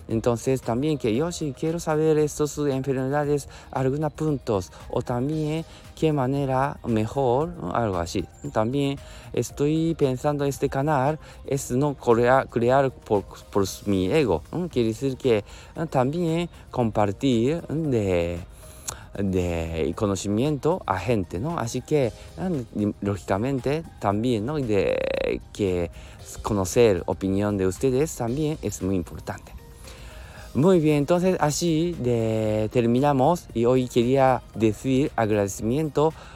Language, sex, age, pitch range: Japanese, male, 20-39, 95-140 Hz